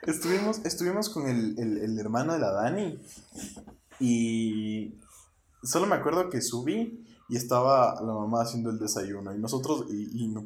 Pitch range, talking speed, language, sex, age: 110-145 Hz, 155 wpm, Spanish, male, 20-39